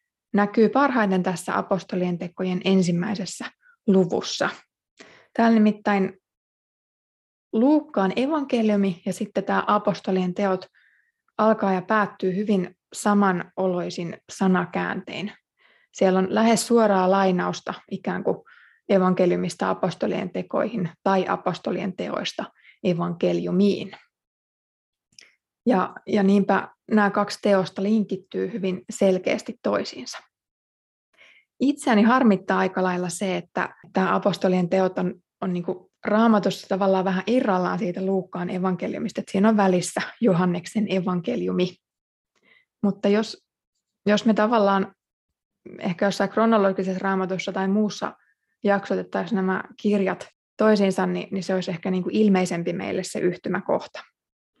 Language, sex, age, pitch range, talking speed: Finnish, female, 20-39, 185-210 Hz, 105 wpm